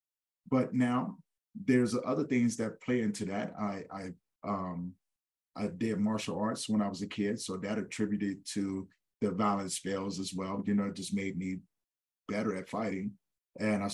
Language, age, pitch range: English, 40-59, 100-125 Hz